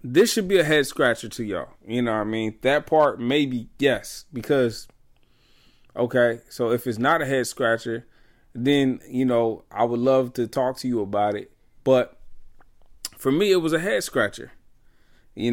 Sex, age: male, 20-39